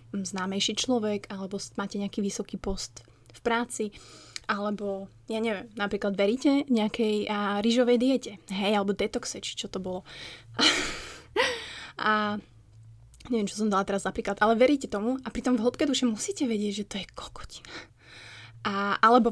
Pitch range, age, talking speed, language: 200-240 Hz, 20-39, 150 wpm, Slovak